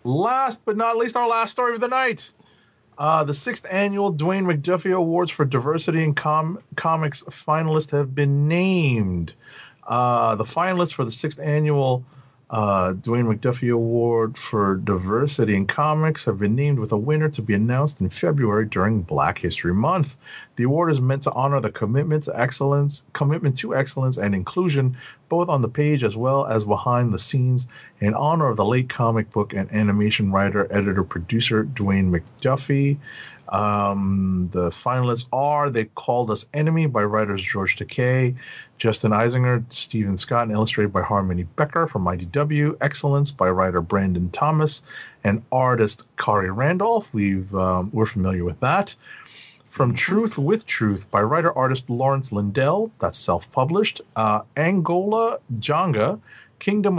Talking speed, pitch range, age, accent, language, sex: 150 wpm, 105-150 Hz, 40-59, American, English, male